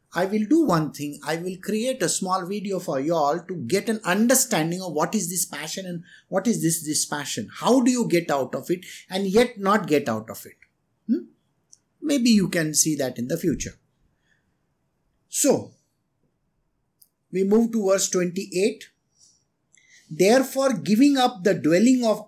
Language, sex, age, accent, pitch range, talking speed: English, male, 50-69, Indian, 170-240 Hz, 170 wpm